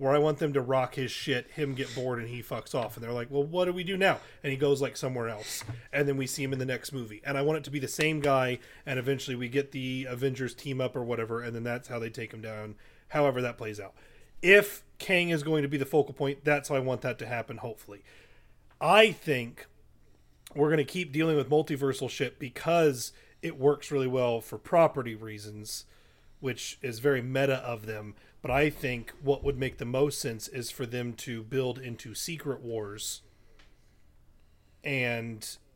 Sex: male